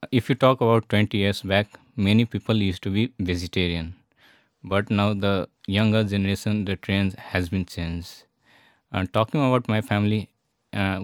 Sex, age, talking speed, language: male, 20-39, 160 wpm, Polish